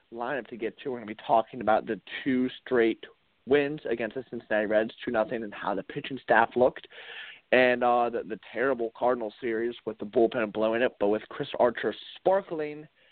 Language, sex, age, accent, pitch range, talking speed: English, male, 30-49, American, 110-140 Hz, 190 wpm